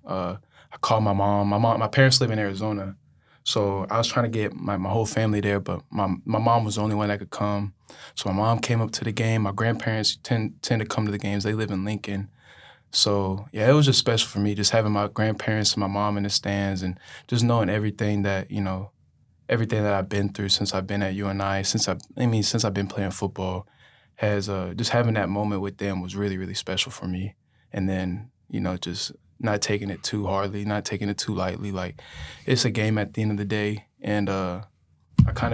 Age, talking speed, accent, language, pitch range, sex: 20-39, 240 wpm, American, English, 100-110 Hz, male